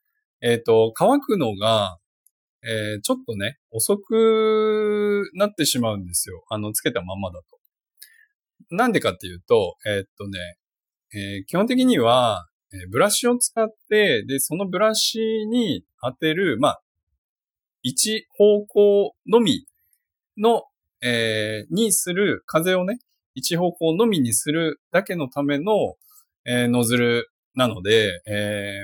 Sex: male